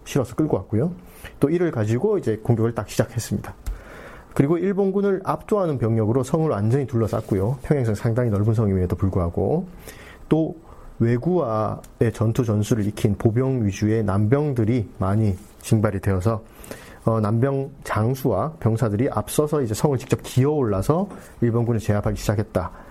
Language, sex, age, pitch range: Korean, male, 40-59, 110-150 Hz